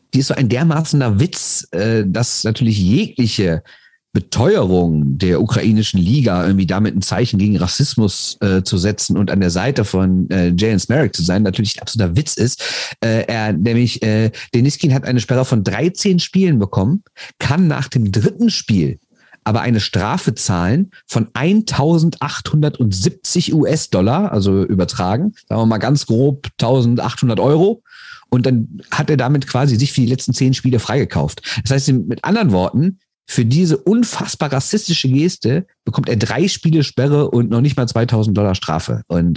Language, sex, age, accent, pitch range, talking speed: German, male, 40-59, German, 105-140 Hz, 155 wpm